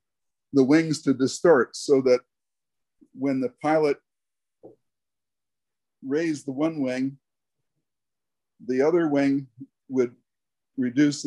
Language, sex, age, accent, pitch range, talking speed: English, male, 50-69, American, 125-145 Hz, 95 wpm